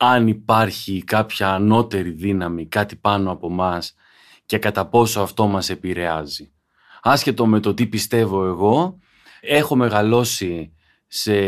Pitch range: 100-135 Hz